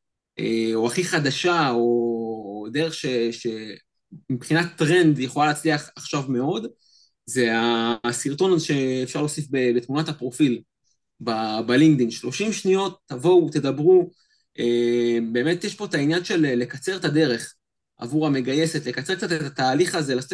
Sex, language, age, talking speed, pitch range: male, Hebrew, 20-39, 120 wpm, 125-180 Hz